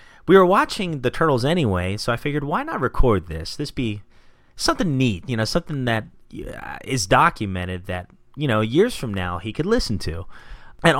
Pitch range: 95-120 Hz